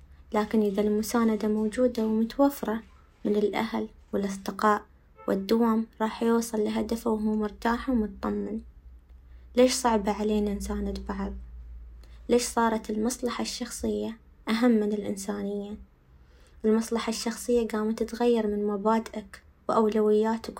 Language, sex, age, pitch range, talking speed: Arabic, female, 20-39, 200-230 Hz, 100 wpm